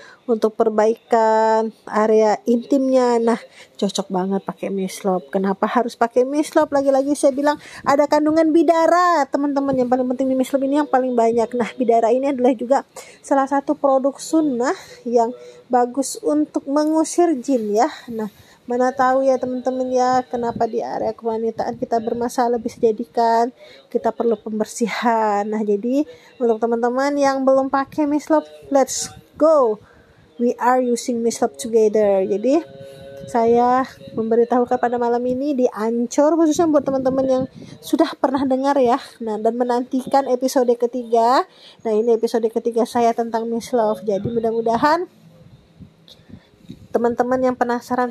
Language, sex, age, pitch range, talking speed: Indonesian, female, 20-39, 230-275 Hz, 135 wpm